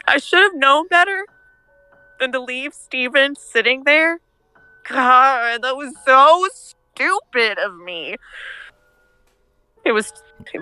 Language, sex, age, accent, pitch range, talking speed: English, female, 20-39, American, 175-245 Hz, 120 wpm